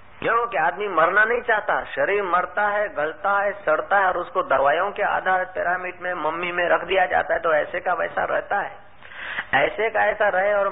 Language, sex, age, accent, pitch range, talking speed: Hindi, male, 50-69, native, 140-205 Hz, 215 wpm